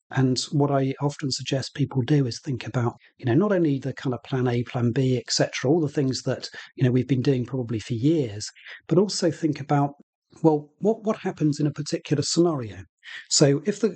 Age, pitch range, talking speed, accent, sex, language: 40-59, 125-150 Hz, 215 wpm, British, male, English